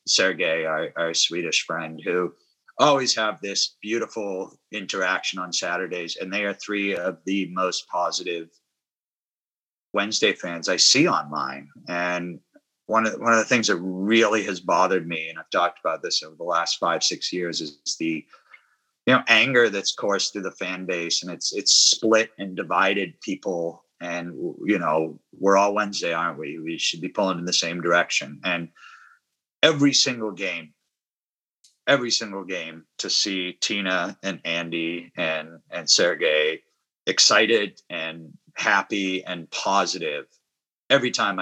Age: 30-49